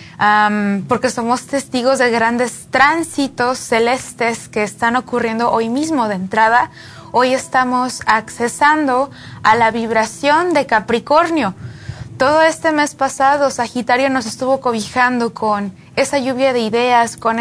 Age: 20-39